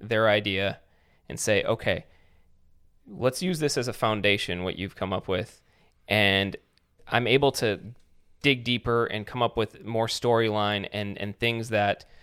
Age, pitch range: 20-39, 100-115 Hz